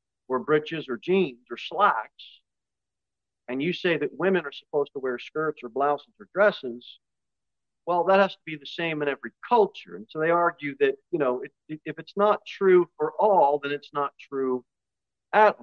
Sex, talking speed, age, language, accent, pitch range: male, 190 wpm, 50-69, English, American, 145-200 Hz